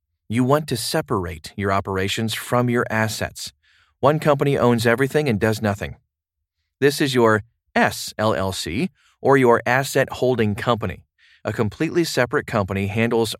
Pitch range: 105-135 Hz